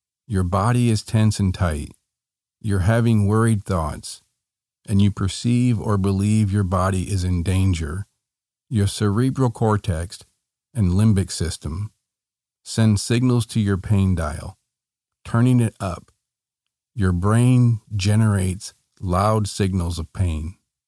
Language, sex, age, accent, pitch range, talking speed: English, male, 50-69, American, 95-110 Hz, 120 wpm